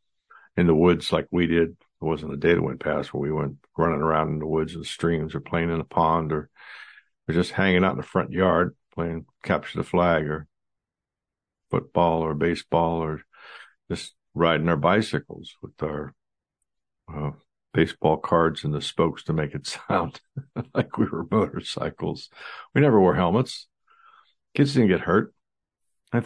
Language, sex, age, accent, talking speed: English, male, 60-79, American, 170 wpm